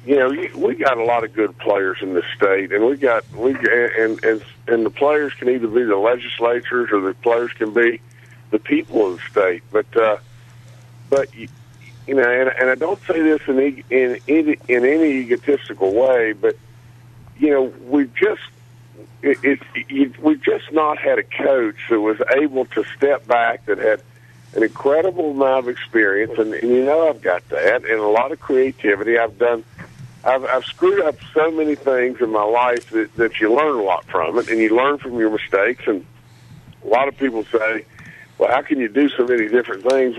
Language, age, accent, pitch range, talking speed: English, 50-69, American, 120-150 Hz, 205 wpm